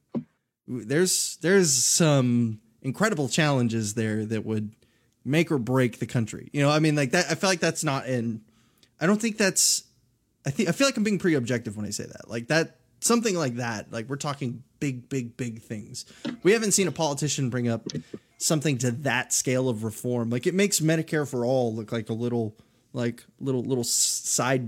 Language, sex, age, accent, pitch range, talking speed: English, male, 20-39, American, 120-150 Hz, 195 wpm